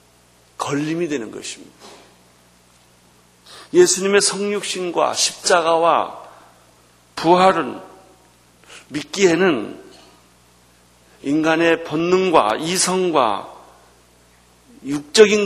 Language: Korean